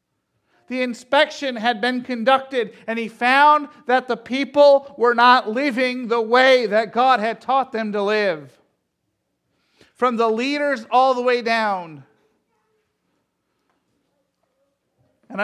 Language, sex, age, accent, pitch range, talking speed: English, male, 50-69, American, 210-245 Hz, 120 wpm